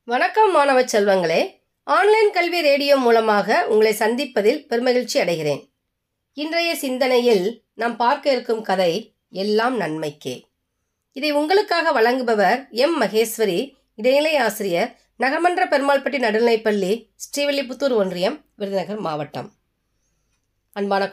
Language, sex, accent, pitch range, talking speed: Tamil, female, native, 180-255 Hz, 95 wpm